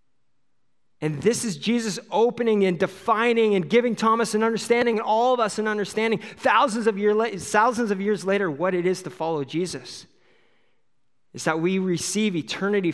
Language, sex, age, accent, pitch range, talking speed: English, male, 30-49, American, 155-215 Hz, 160 wpm